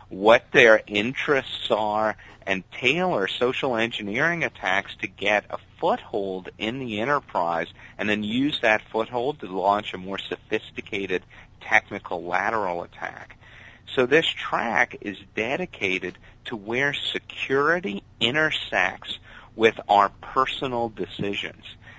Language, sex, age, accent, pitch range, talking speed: English, male, 40-59, American, 95-120 Hz, 115 wpm